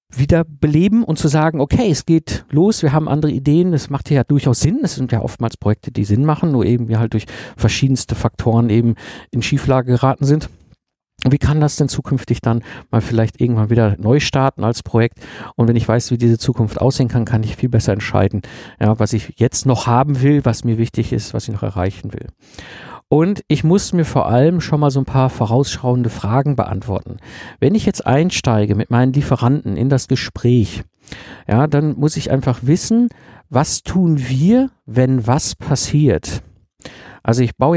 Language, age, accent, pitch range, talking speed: German, 50-69, German, 115-145 Hz, 195 wpm